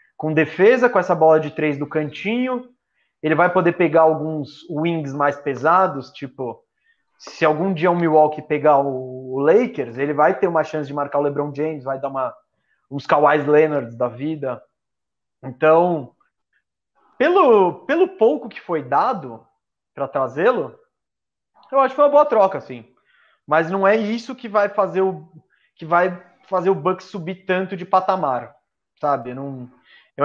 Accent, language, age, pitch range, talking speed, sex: Brazilian, Portuguese, 20-39, 145-185 Hz, 160 wpm, male